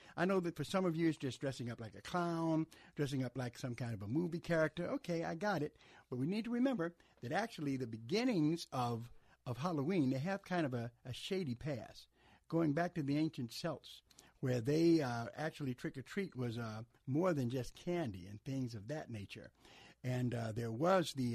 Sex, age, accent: male, 60-79, American